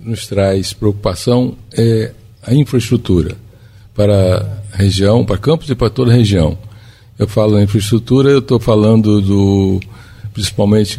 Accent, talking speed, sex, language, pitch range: Brazilian, 135 wpm, male, Portuguese, 95-110 Hz